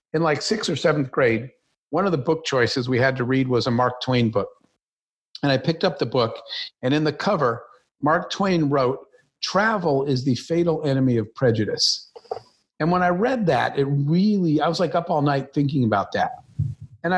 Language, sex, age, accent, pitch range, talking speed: English, male, 50-69, American, 135-170 Hz, 200 wpm